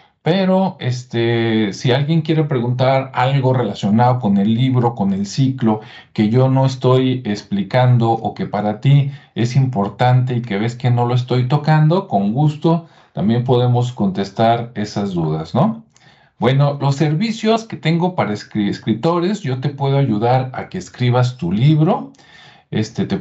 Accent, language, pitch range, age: Mexican, Spanish, 115-160 Hz, 50-69